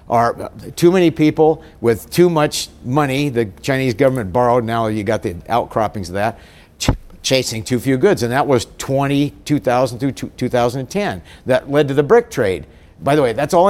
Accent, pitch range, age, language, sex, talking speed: American, 110-150 Hz, 50-69, English, male, 195 wpm